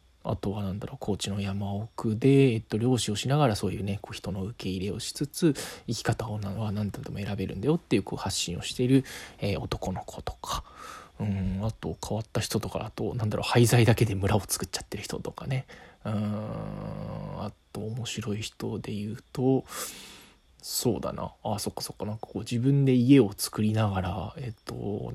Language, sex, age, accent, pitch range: Japanese, male, 20-39, native, 100-130 Hz